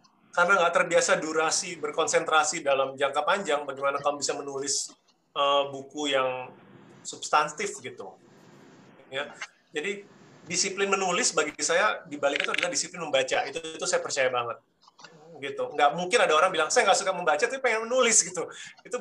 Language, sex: Indonesian, male